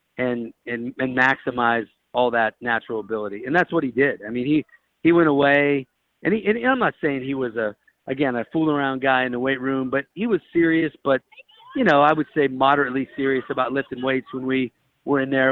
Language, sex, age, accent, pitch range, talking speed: English, male, 50-69, American, 130-150 Hz, 220 wpm